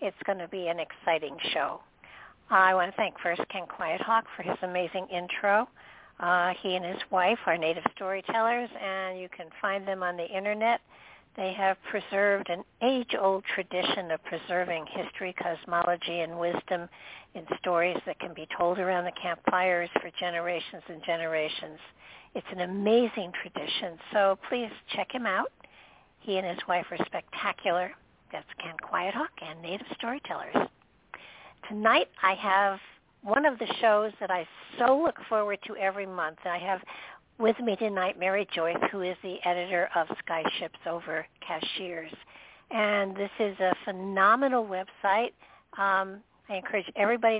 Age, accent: 60-79, American